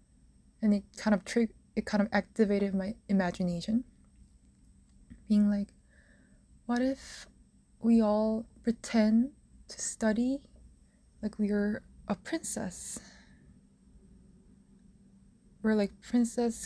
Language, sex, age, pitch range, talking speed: English, female, 20-39, 195-220 Hz, 100 wpm